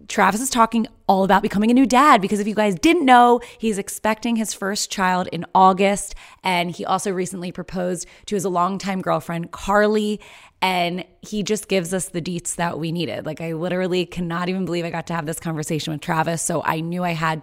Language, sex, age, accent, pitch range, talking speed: English, female, 20-39, American, 165-210 Hz, 210 wpm